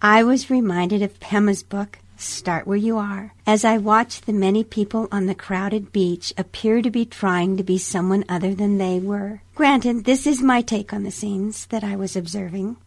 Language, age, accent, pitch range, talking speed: English, 60-79, American, 185-225 Hz, 200 wpm